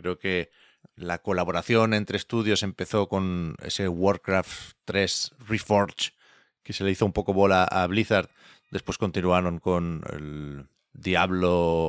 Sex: male